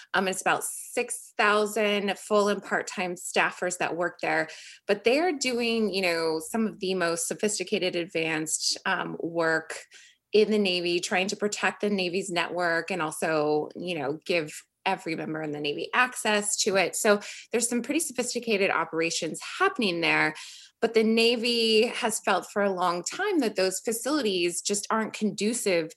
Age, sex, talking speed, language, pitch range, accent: 20-39, female, 160 wpm, English, 180-230 Hz, American